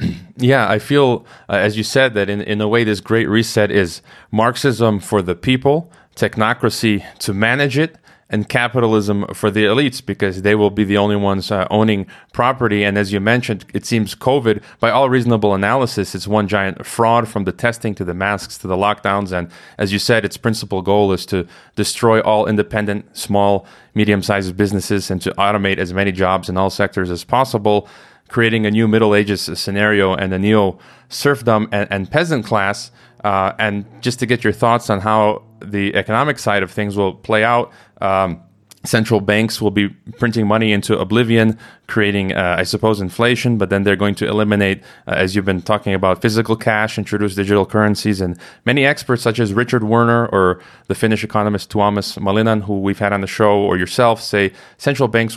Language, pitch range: English, 100-120 Hz